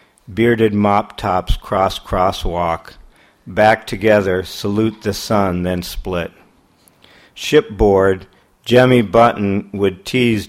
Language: English